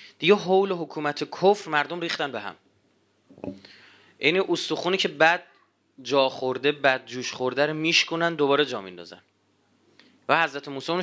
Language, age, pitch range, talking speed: Persian, 30-49, 135-190 Hz, 140 wpm